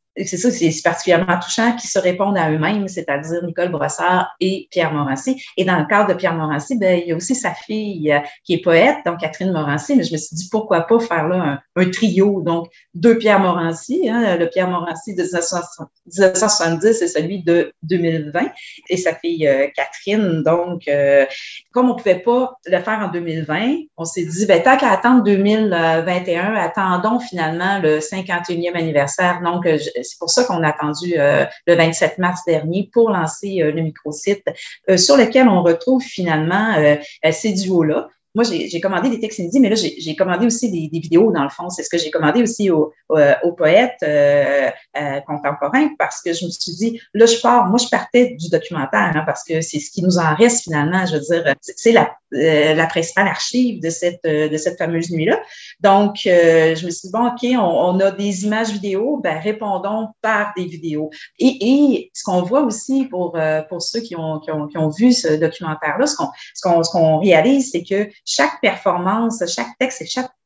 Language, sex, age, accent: French, female, 30-49, Canadian